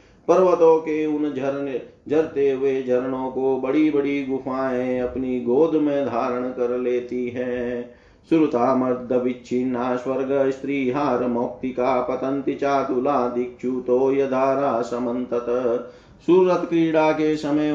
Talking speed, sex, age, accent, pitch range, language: 80 wpm, male, 40-59, native, 125-145 Hz, Hindi